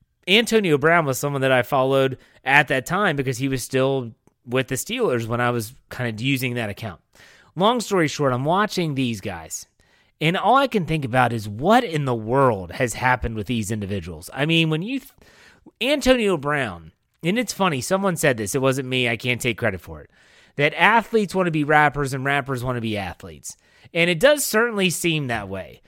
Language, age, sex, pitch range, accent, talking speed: English, 30-49, male, 120-165 Hz, American, 205 wpm